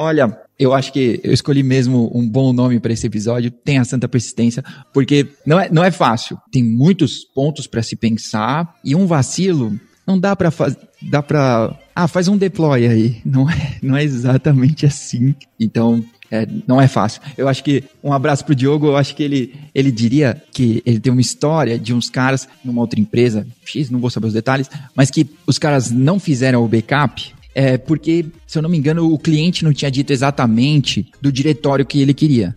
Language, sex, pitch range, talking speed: Portuguese, male, 125-165 Hz, 205 wpm